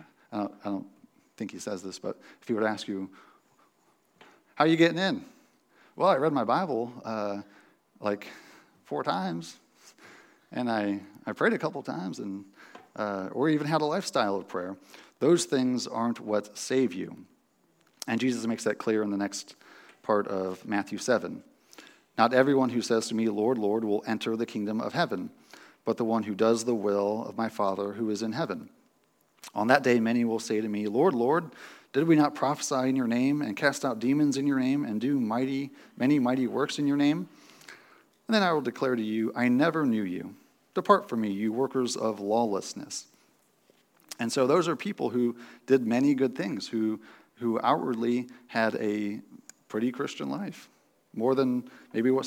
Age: 40-59